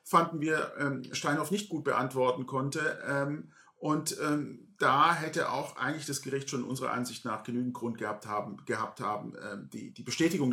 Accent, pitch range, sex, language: German, 130-170 Hz, male, German